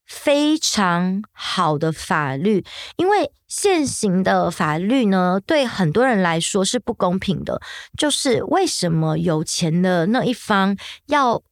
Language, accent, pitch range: Chinese, American, 180-255 Hz